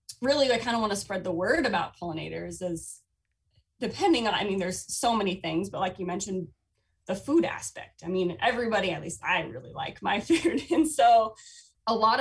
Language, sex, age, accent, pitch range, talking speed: English, female, 20-39, American, 180-225 Hz, 200 wpm